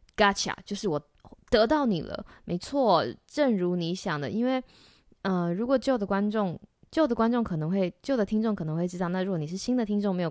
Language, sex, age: Chinese, female, 20-39